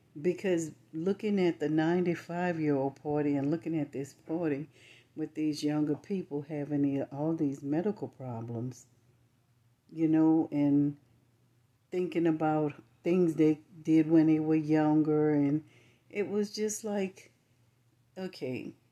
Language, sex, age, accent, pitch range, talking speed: English, female, 60-79, American, 125-160 Hz, 120 wpm